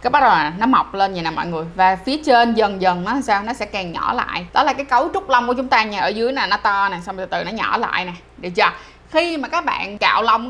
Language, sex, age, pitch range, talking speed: Vietnamese, female, 20-39, 210-275 Hz, 305 wpm